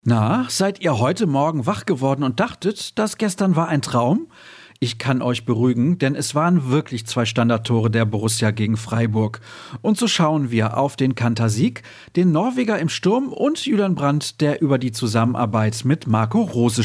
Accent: German